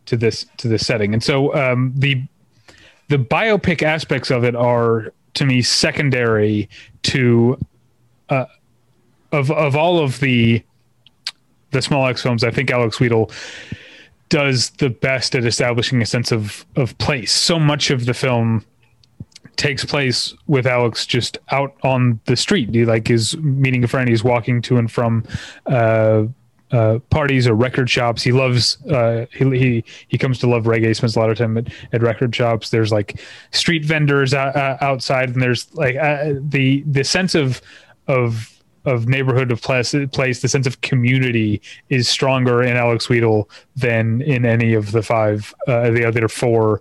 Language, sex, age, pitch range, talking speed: English, male, 30-49, 115-140 Hz, 170 wpm